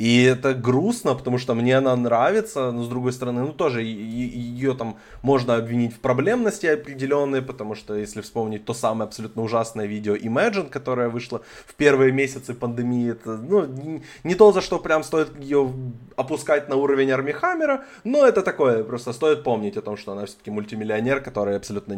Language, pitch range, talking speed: Ukrainian, 115-145 Hz, 180 wpm